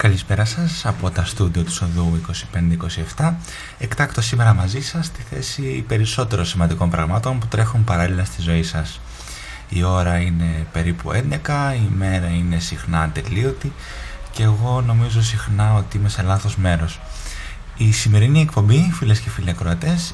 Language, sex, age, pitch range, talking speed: Greek, male, 20-39, 90-120 Hz, 145 wpm